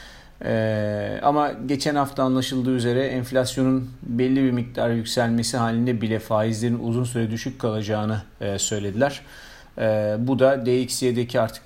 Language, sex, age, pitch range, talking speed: Turkish, male, 40-59, 110-130 Hz, 130 wpm